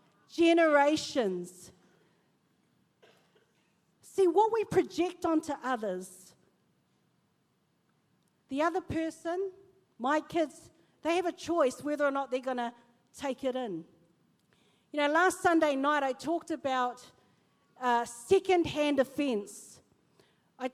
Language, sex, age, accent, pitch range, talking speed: English, female, 40-59, Australian, 240-315 Hz, 105 wpm